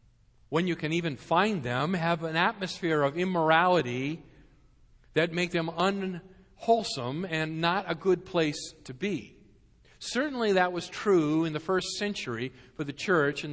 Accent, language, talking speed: American, English, 150 wpm